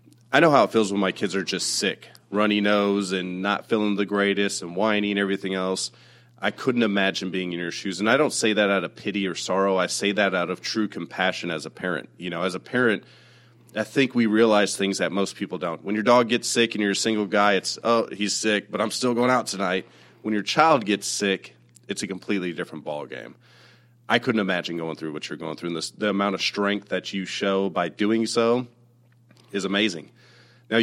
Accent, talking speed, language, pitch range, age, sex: American, 230 wpm, English, 90-110 Hz, 30-49, male